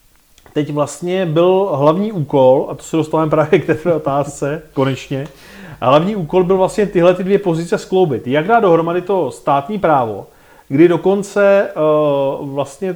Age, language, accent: 30-49, Czech, native